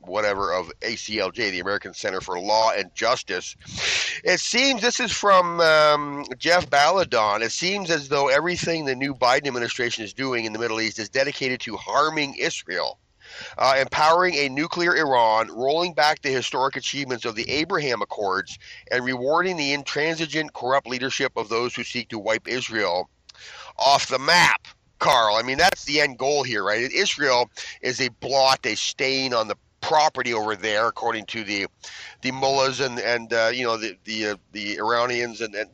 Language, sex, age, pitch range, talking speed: English, male, 40-59, 115-145 Hz, 175 wpm